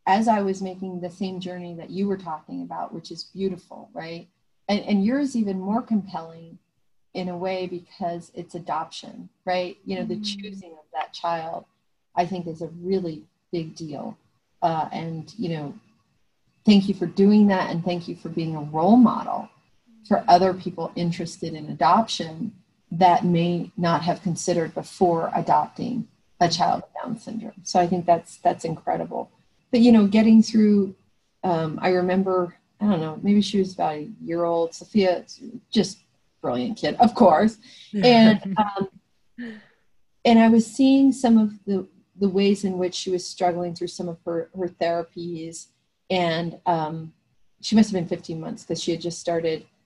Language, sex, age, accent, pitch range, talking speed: English, female, 40-59, American, 170-205 Hz, 175 wpm